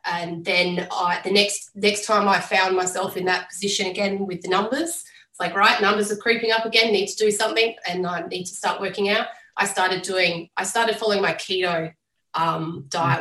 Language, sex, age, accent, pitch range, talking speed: English, female, 20-39, Australian, 175-210 Hz, 210 wpm